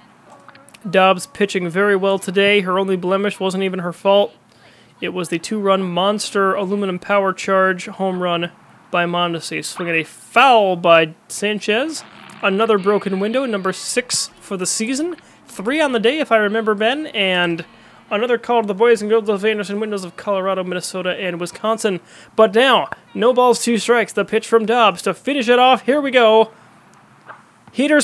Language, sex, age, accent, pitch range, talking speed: English, male, 20-39, American, 195-240 Hz, 170 wpm